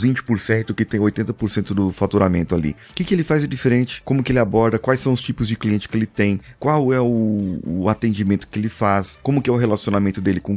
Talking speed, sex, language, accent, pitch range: 240 wpm, male, Portuguese, Brazilian, 100-135 Hz